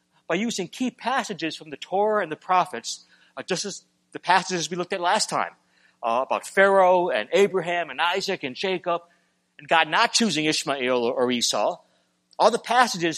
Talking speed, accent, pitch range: 180 wpm, American, 125-195 Hz